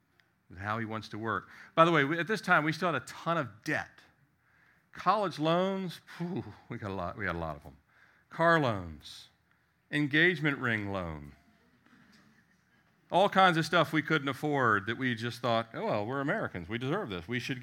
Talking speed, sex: 180 wpm, male